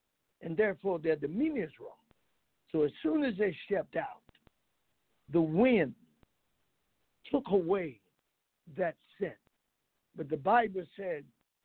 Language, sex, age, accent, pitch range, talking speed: English, male, 60-79, American, 180-215 Hz, 120 wpm